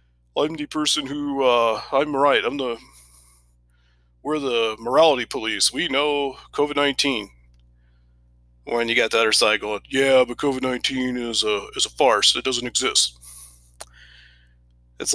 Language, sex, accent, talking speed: English, male, American, 145 wpm